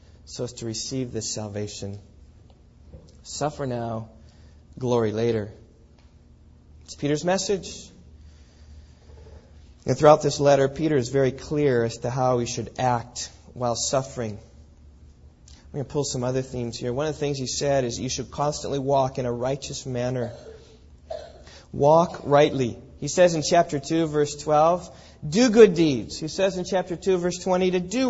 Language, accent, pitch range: English, American, 115-170 Hz